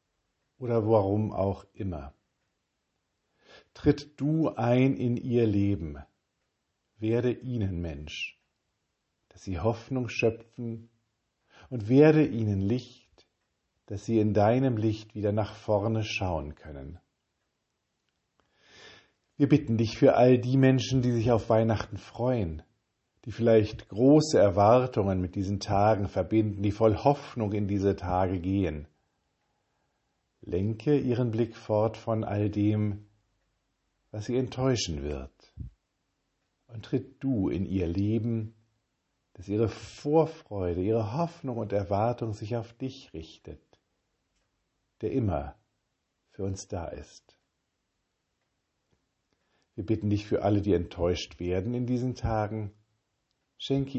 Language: German